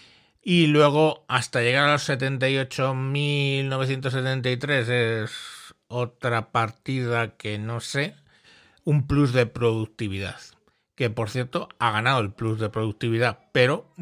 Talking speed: 115 wpm